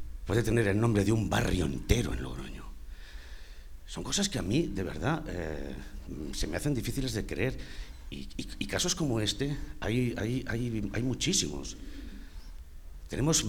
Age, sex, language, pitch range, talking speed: 60-79, male, Spanish, 70-115 Hz, 155 wpm